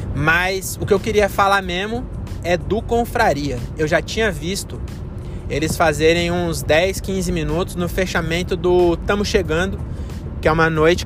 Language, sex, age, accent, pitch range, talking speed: Portuguese, male, 20-39, Brazilian, 150-190 Hz, 155 wpm